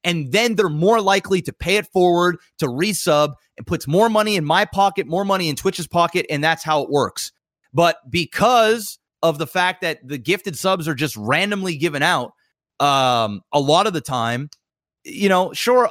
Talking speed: 190 wpm